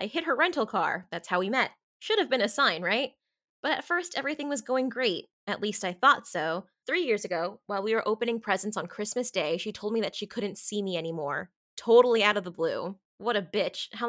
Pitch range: 190-250 Hz